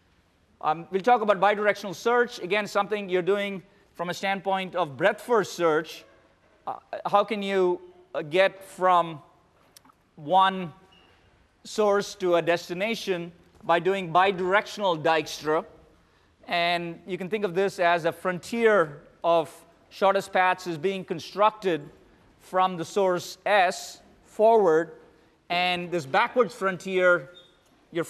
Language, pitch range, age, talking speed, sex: English, 170-200 Hz, 30-49, 120 wpm, male